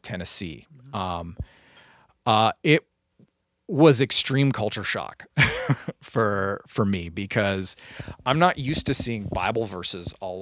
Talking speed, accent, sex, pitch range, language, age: 115 wpm, American, male, 95-130 Hz, English, 30-49